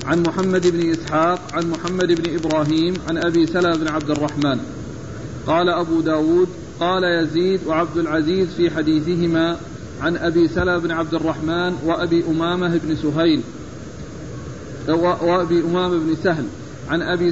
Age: 40-59